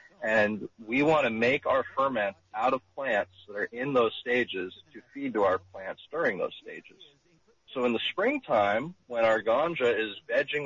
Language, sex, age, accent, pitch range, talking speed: English, male, 40-59, American, 115-160 Hz, 180 wpm